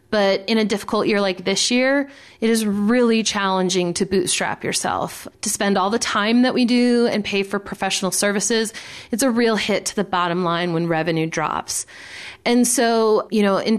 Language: English